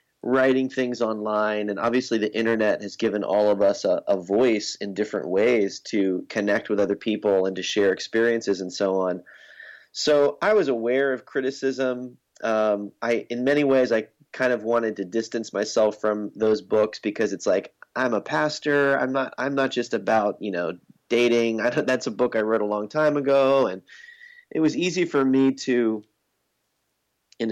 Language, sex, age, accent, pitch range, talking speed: English, male, 30-49, American, 105-125 Hz, 185 wpm